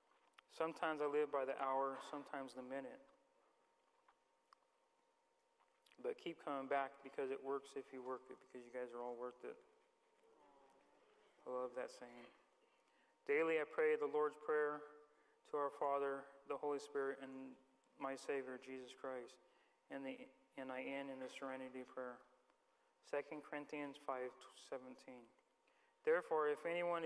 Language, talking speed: English, 140 wpm